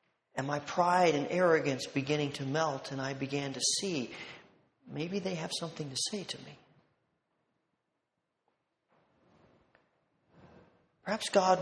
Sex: male